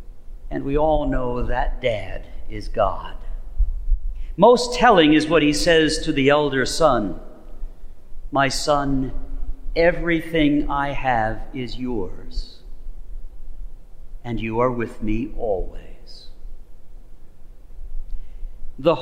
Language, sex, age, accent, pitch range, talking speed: English, male, 50-69, American, 120-170 Hz, 100 wpm